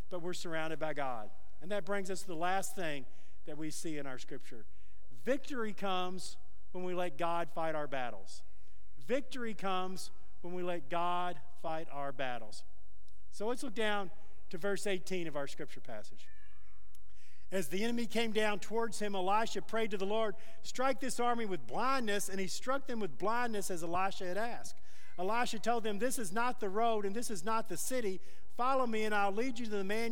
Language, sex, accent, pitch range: English, male, American, 160-225 Hz